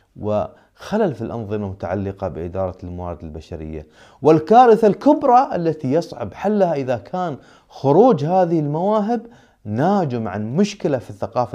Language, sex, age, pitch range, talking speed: Arabic, male, 30-49, 100-155 Hz, 115 wpm